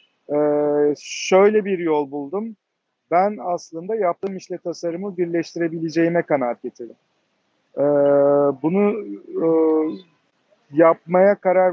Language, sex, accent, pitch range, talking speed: Turkish, male, native, 140-170 Hz, 90 wpm